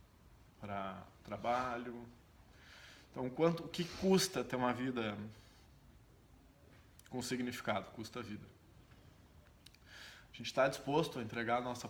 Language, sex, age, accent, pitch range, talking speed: Portuguese, male, 20-39, Brazilian, 110-130 Hz, 110 wpm